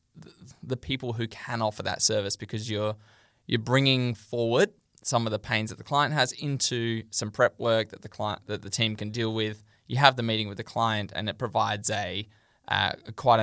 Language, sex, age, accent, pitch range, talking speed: English, male, 10-29, Australian, 110-125 Hz, 205 wpm